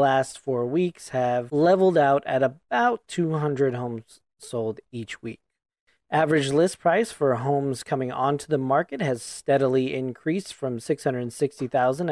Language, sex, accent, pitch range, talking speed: English, male, American, 125-155 Hz, 135 wpm